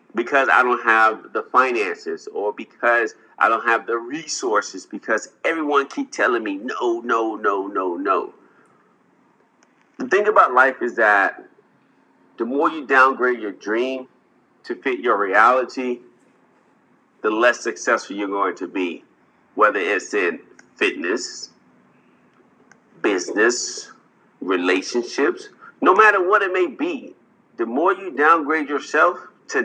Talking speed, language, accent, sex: 130 wpm, English, American, male